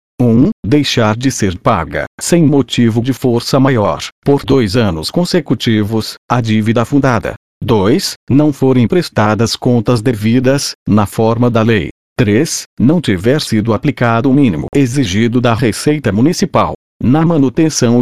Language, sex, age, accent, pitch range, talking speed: Portuguese, male, 50-69, Brazilian, 115-140 Hz, 135 wpm